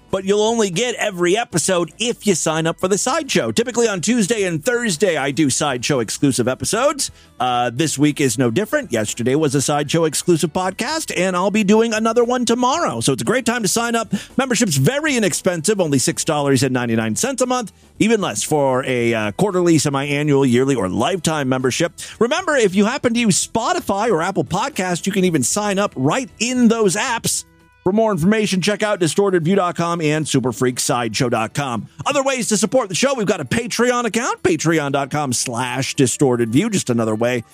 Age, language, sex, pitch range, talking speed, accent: 40-59, English, male, 135-215 Hz, 180 wpm, American